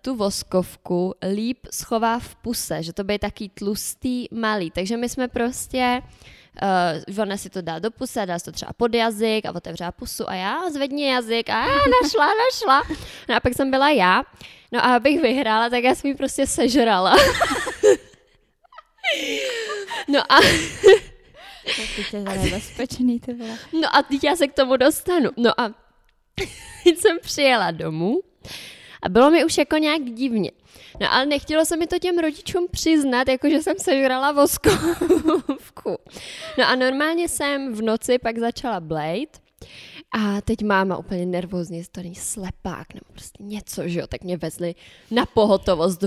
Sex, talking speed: female, 155 wpm